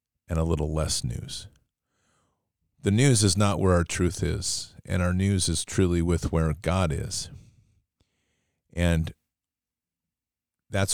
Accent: American